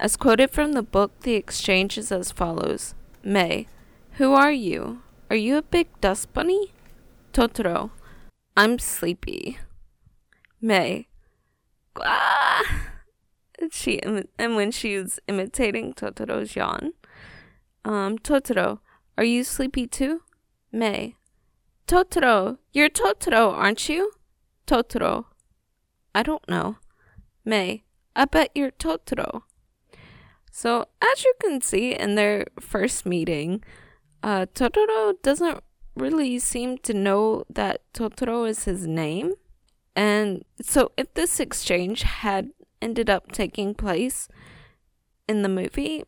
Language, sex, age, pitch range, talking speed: English, female, 20-39, 195-275 Hz, 115 wpm